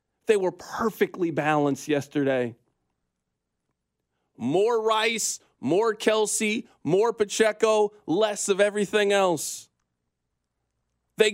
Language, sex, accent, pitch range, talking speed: English, male, American, 155-215 Hz, 85 wpm